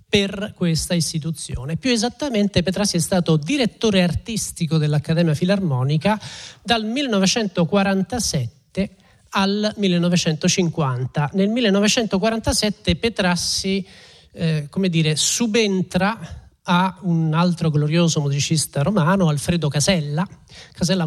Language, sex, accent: Italian, male, native